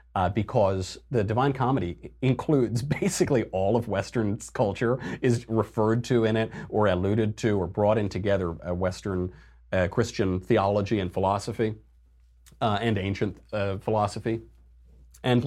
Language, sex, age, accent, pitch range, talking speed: English, male, 40-59, American, 90-120 Hz, 140 wpm